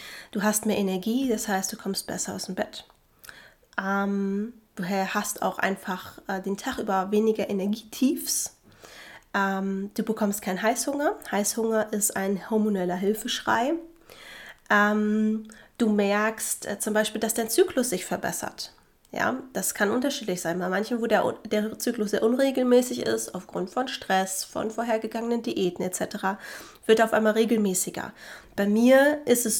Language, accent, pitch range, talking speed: German, German, 200-235 Hz, 150 wpm